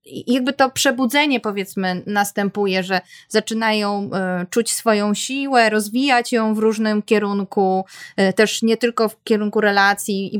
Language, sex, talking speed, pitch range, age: Polish, female, 145 wpm, 215-280 Hz, 20-39